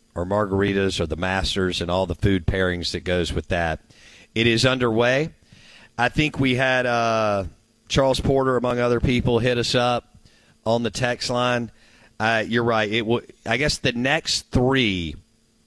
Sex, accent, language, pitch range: male, American, English, 90-115 Hz